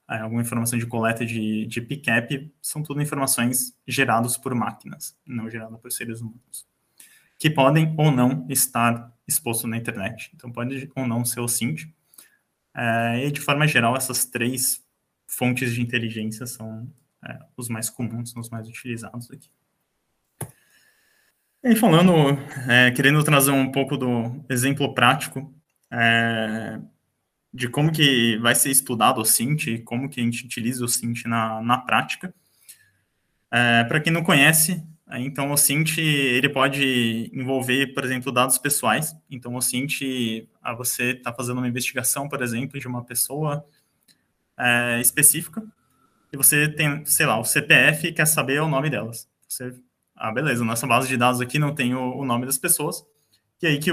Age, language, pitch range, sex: 20-39, Portuguese, 120-145 Hz, male